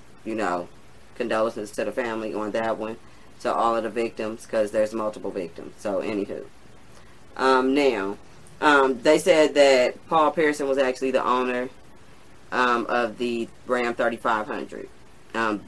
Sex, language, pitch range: female, English, 120-155 Hz